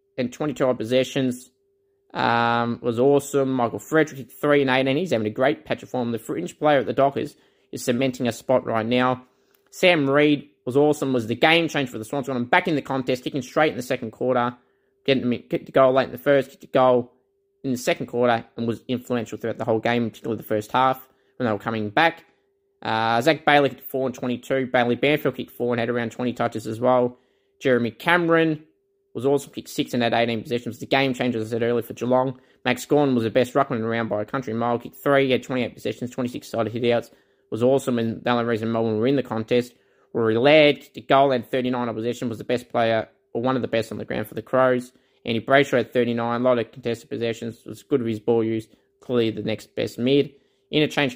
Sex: male